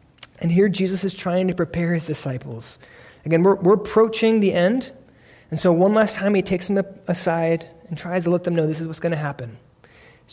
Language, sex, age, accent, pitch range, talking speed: English, male, 20-39, American, 155-210 Hz, 210 wpm